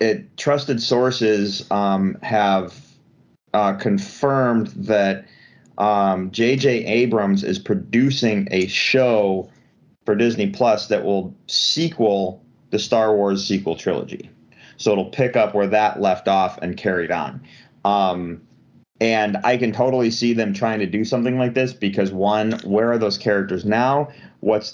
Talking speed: 140 wpm